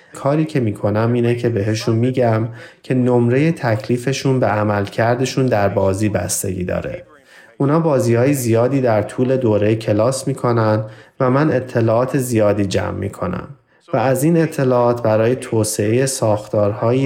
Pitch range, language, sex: 105-130 Hz, Persian, male